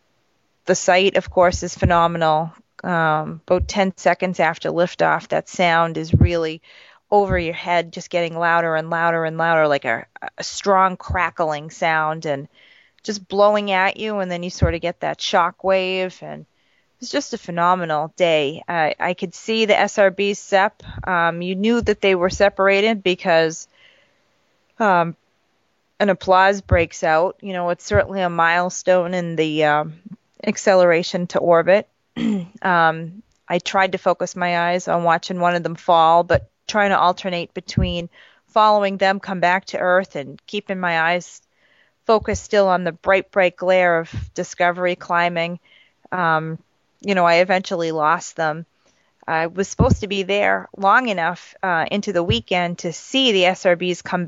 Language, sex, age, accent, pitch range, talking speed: English, female, 30-49, American, 165-195 Hz, 160 wpm